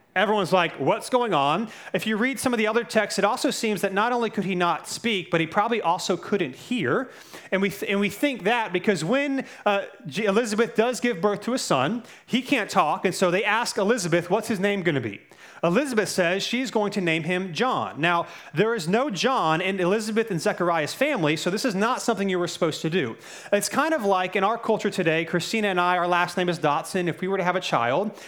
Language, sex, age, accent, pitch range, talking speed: English, male, 30-49, American, 175-225 Hz, 240 wpm